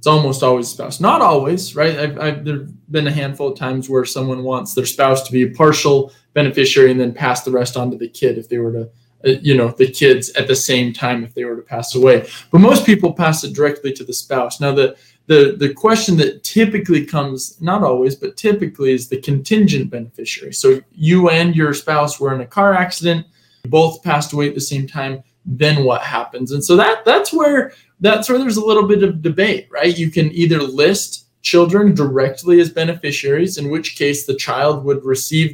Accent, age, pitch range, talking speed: American, 20-39, 130-165 Hz, 215 wpm